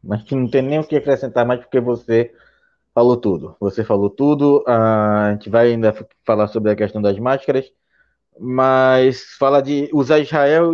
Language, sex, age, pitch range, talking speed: Portuguese, male, 20-39, 120-200 Hz, 175 wpm